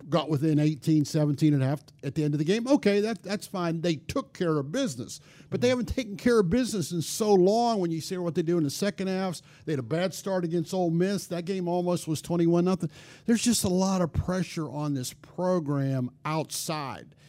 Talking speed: 220 wpm